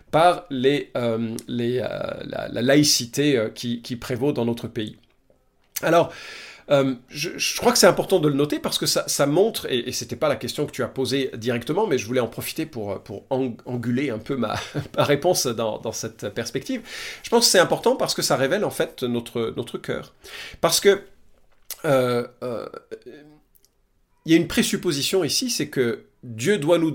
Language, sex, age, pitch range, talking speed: French, male, 40-59, 120-170 Hz, 195 wpm